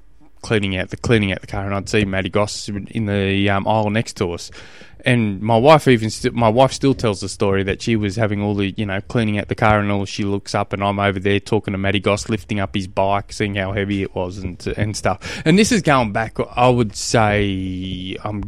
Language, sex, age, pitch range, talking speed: English, male, 20-39, 100-130 Hz, 245 wpm